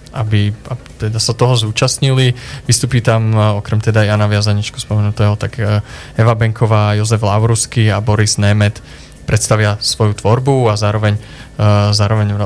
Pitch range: 105-115 Hz